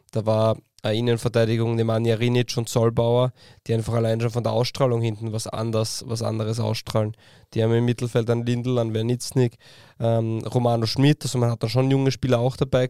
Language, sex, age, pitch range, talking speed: German, male, 20-39, 115-130 Hz, 190 wpm